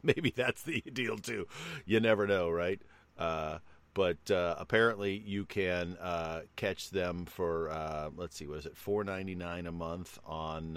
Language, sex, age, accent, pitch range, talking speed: English, male, 40-59, American, 75-90 Hz, 165 wpm